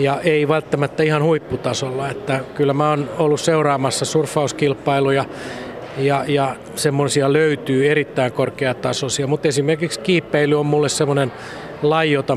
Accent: native